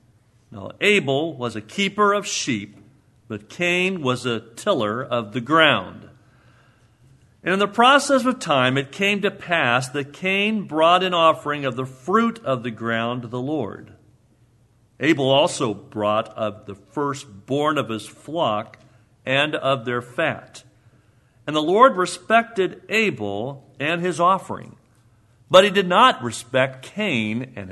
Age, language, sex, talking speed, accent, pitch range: 50-69, English, male, 145 wpm, American, 120-185 Hz